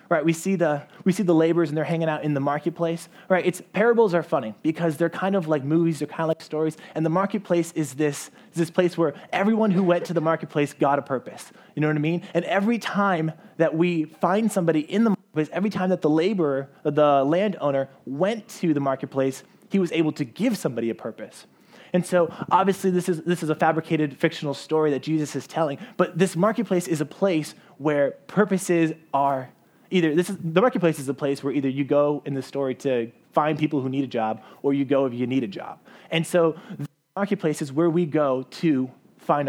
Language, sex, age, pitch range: English, male, 20-39, 145-180 Hz